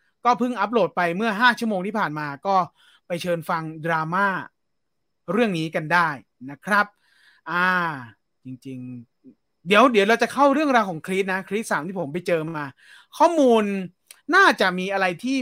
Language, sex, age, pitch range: English, male, 30-49, 170-240 Hz